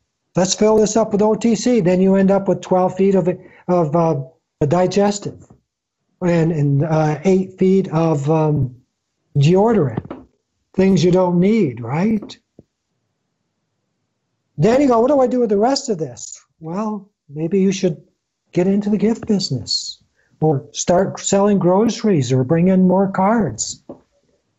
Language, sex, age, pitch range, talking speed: English, male, 60-79, 160-210 Hz, 145 wpm